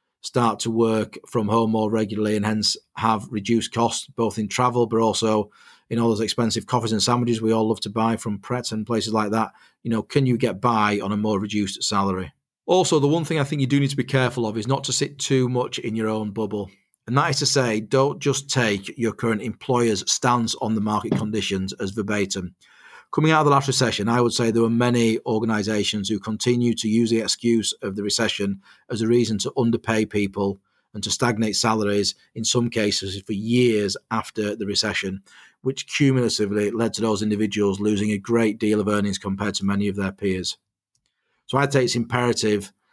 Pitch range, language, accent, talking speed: 105-120 Hz, English, British, 210 wpm